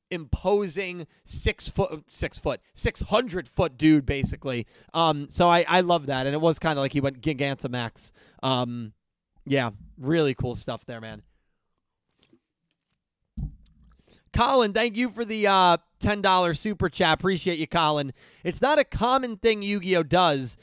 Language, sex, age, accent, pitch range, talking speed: English, male, 30-49, American, 140-190 Hz, 155 wpm